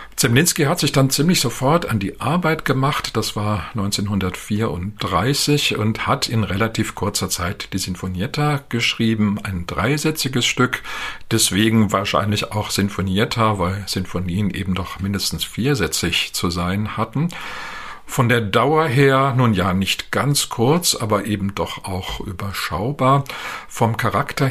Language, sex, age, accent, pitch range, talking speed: German, male, 50-69, German, 100-125 Hz, 130 wpm